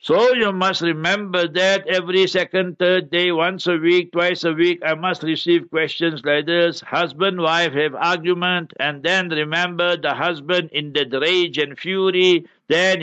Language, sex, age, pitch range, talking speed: English, male, 60-79, 150-180 Hz, 165 wpm